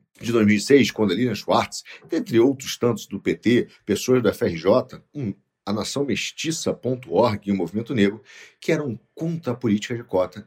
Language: Portuguese